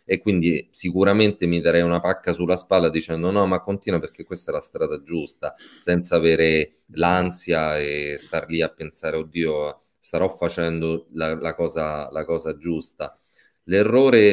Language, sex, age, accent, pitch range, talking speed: Italian, male, 30-49, native, 80-90 Hz, 155 wpm